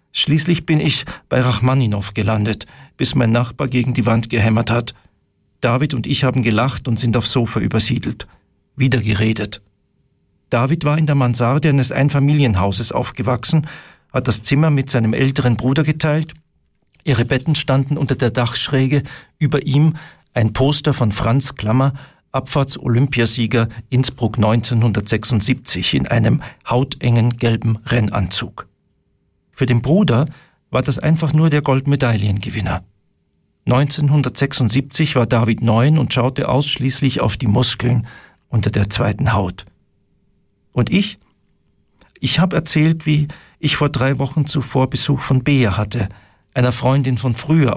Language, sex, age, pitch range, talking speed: German, male, 50-69, 115-145 Hz, 135 wpm